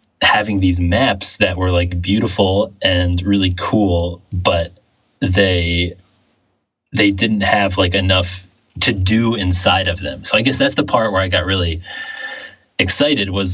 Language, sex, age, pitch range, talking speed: English, male, 20-39, 90-100 Hz, 150 wpm